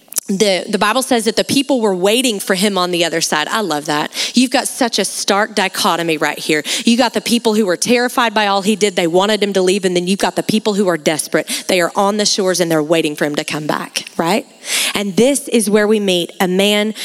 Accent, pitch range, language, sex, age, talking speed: American, 180-235 Hz, English, female, 30-49, 255 wpm